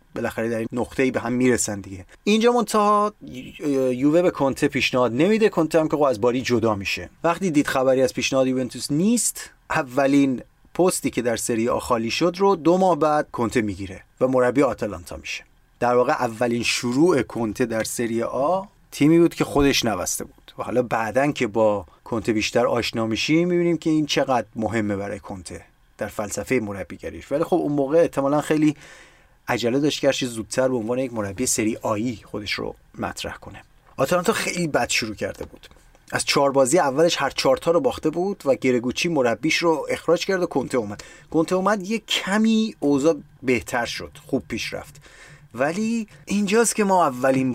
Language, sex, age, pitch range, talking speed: Persian, male, 30-49, 120-170 Hz, 175 wpm